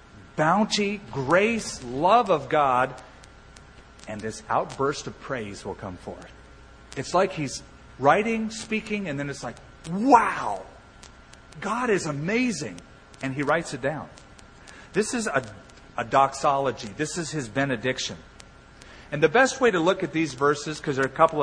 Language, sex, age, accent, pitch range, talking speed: English, male, 40-59, American, 115-160 Hz, 150 wpm